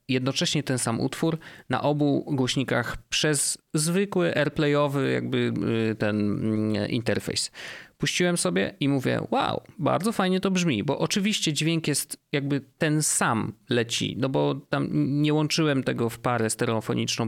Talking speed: 135 wpm